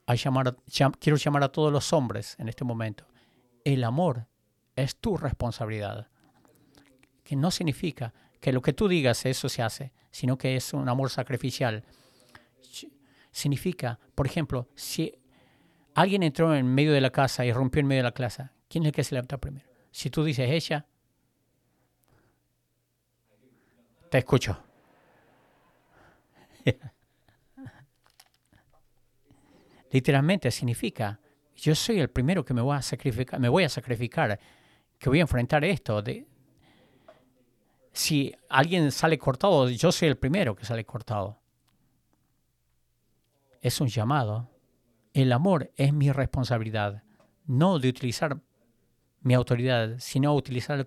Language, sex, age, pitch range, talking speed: English, male, 50-69, 120-150 Hz, 130 wpm